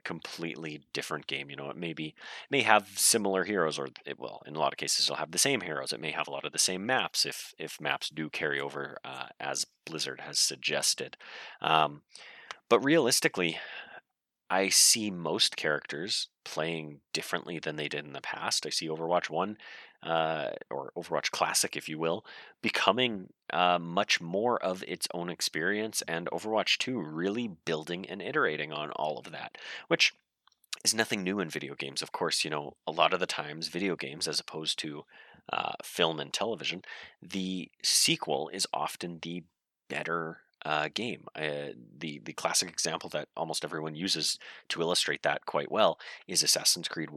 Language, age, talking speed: English, 30-49, 180 wpm